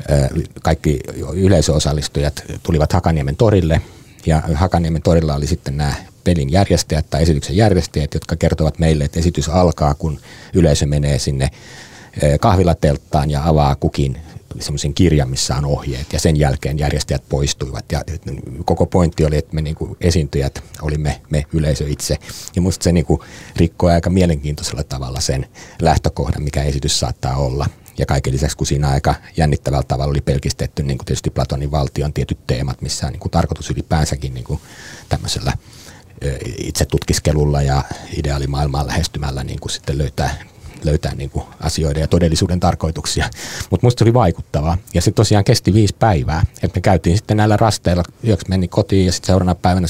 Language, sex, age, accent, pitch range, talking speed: Finnish, male, 30-49, native, 75-90 Hz, 155 wpm